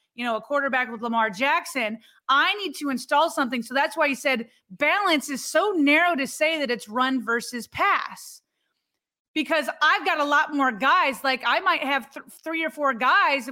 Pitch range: 245-305 Hz